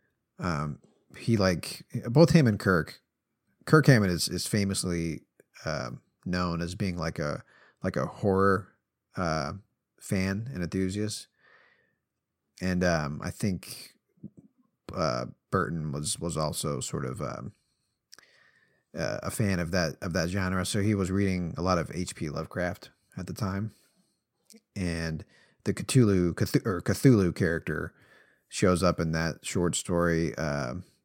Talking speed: 140 wpm